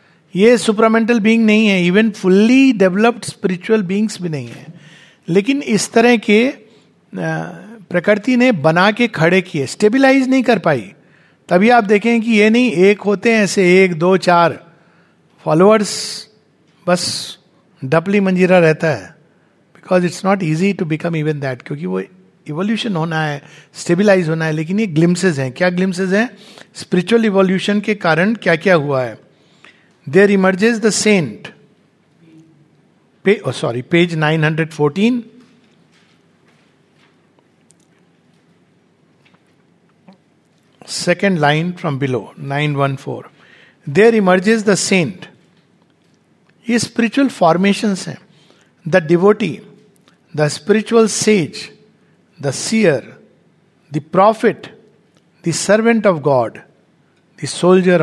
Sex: male